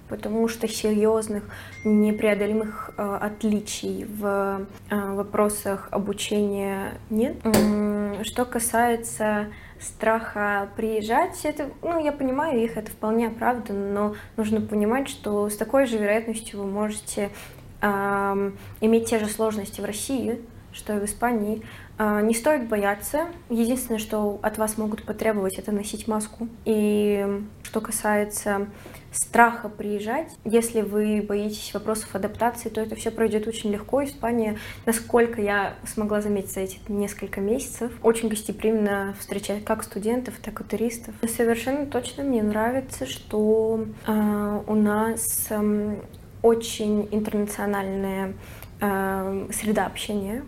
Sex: female